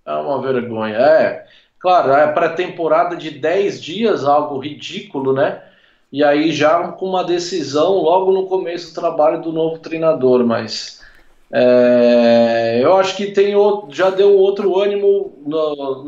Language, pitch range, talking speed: Portuguese, 155-195 Hz, 135 wpm